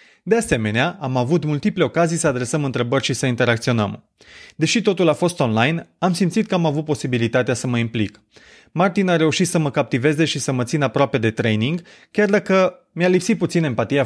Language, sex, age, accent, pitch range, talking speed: Romanian, male, 30-49, native, 125-175 Hz, 190 wpm